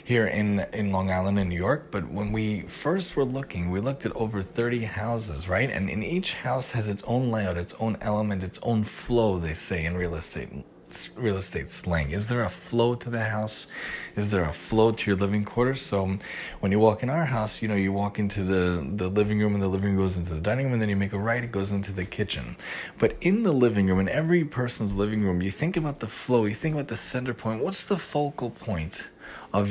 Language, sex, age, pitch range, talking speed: English, male, 30-49, 95-120 Hz, 240 wpm